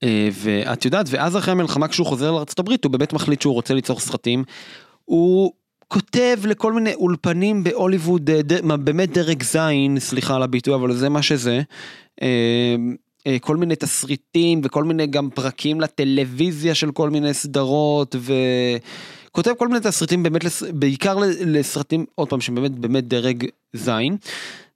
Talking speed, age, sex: 140 wpm, 30-49, male